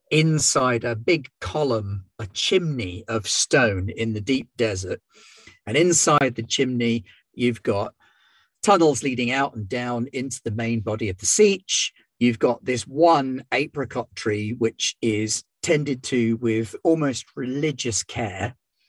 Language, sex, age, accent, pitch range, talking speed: English, male, 40-59, British, 110-145 Hz, 140 wpm